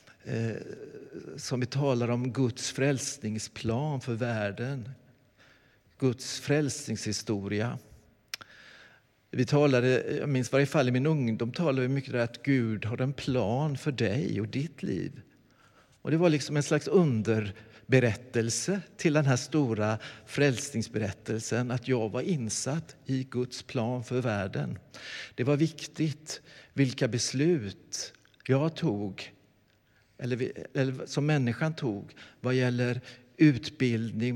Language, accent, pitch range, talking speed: Swedish, native, 115-145 Hz, 120 wpm